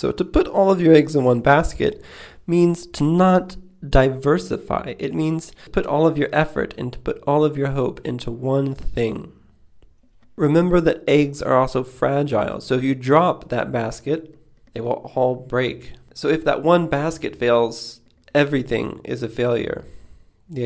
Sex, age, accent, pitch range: male, 20-39, American, 115-145 Hz